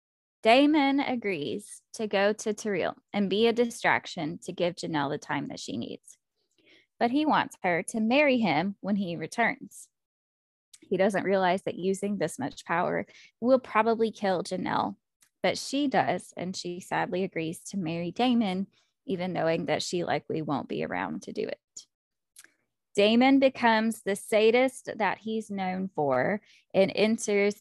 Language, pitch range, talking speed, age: English, 180-225 Hz, 155 wpm, 20-39